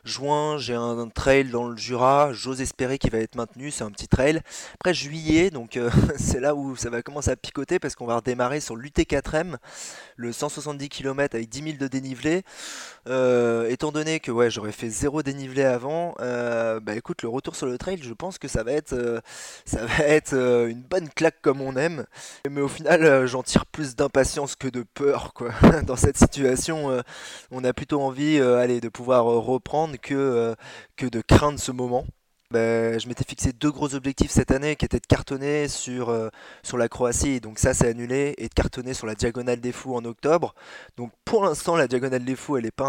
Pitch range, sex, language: 120-145 Hz, male, French